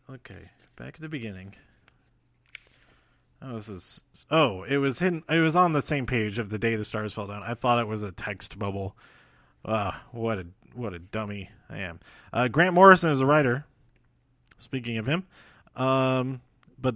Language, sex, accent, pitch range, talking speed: English, male, American, 110-140 Hz, 185 wpm